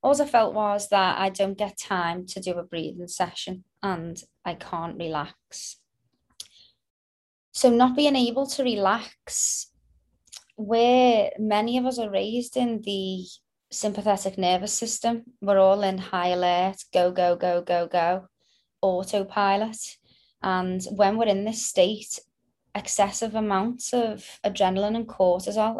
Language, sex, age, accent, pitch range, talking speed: English, female, 20-39, British, 185-235 Hz, 135 wpm